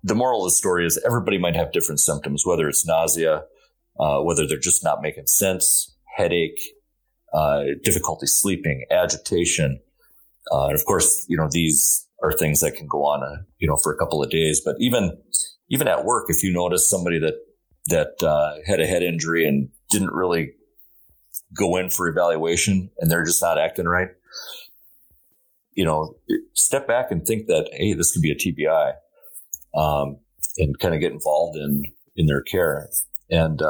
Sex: male